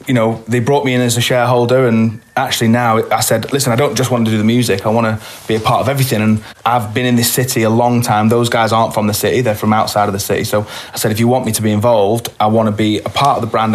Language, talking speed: English, 330 wpm